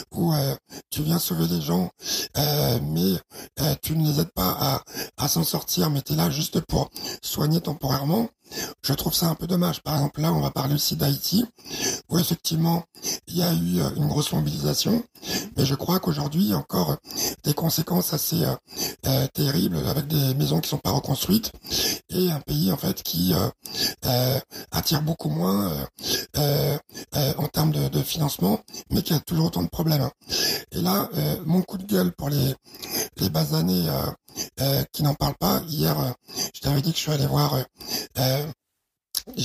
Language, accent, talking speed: French, French, 195 wpm